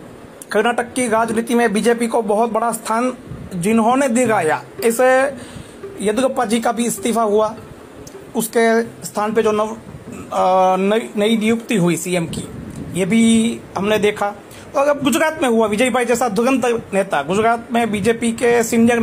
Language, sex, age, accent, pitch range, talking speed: Hindi, male, 40-59, native, 215-250 Hz, 150 wpm